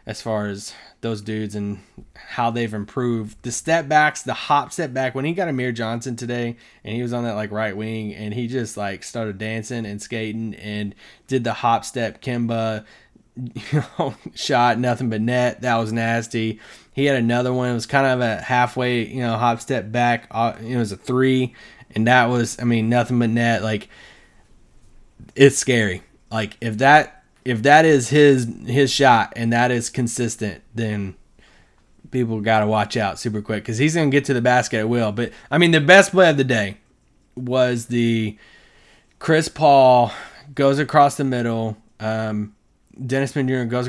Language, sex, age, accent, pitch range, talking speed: English, male, 20-39, American, 115-140 Hz, 180 wpm